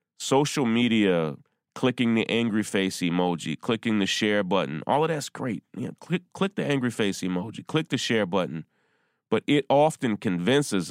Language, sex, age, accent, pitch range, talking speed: English, male, 30-49, American, 100-145 Hz, 160 wpm